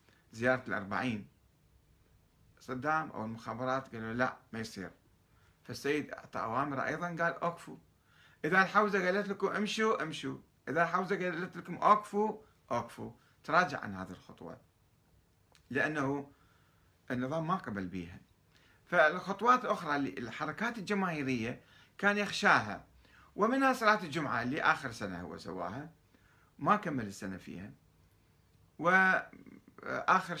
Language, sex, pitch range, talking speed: Arabic, male, 115-175 Hz, 115 wpm